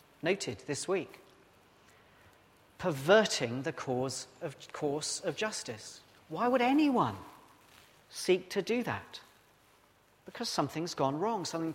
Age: 40-59